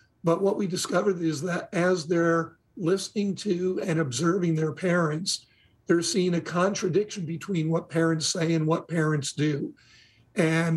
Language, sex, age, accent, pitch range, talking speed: English, male, 50-69, American, 155-175 Hz, 150 wpm